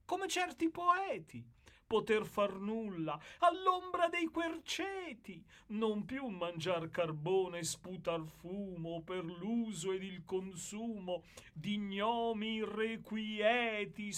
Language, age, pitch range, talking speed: Italian, 40-59, 180-245 Hz, 100 wpm